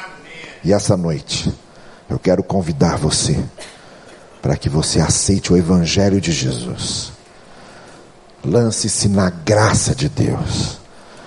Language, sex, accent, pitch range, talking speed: Portuguese, male, Brazilian, 90-135 Hz, 105 wpm